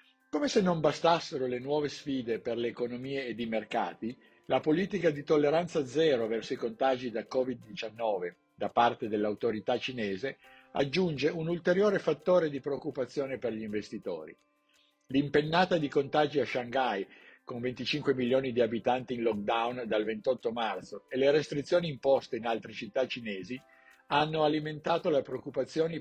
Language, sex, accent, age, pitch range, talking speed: Italian, male, native, 50-69, 120-150 Hz, 145 wpm